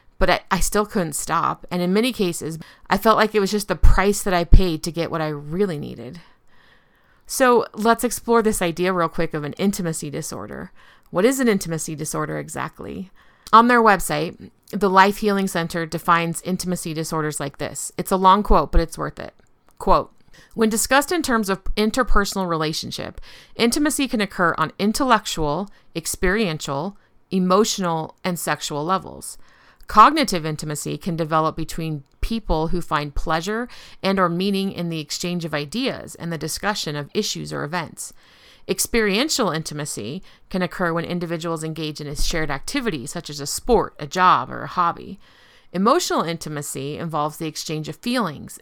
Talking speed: 165 wpm